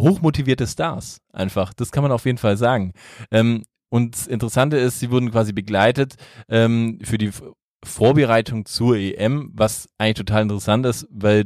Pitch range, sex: 105-120 Hz, male